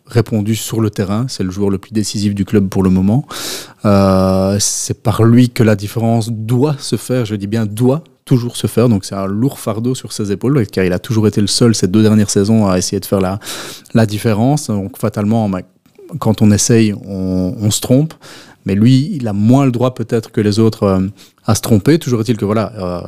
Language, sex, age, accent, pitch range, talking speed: French, male, 30-49, French, 100-120 Hz, 230 wpm